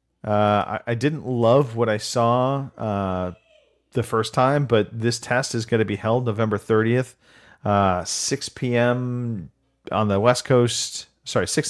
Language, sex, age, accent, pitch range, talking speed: English, male, 40-59, American, 105-135 Hz, 160 wpm